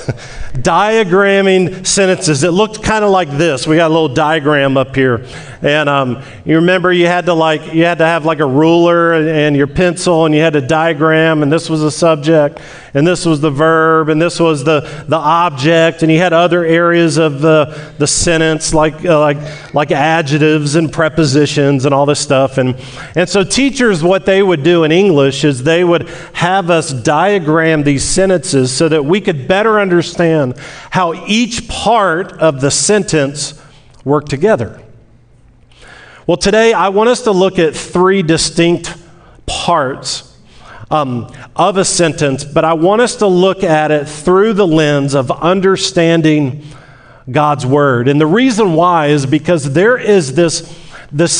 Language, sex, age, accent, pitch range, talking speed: English, male, 40-59, American, 150-180 Hz, 170 wpm